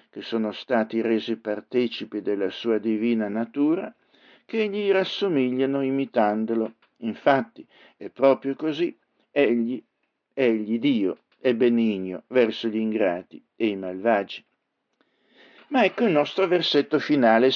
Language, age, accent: Italian, 60-79, native